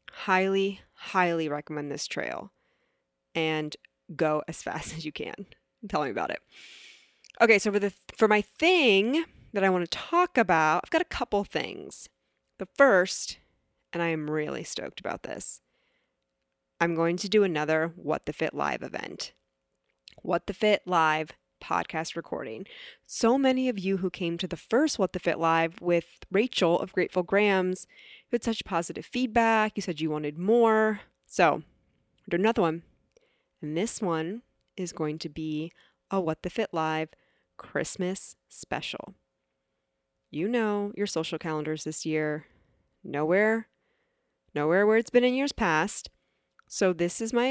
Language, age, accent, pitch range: English, 20-39, American, 160-210 Hz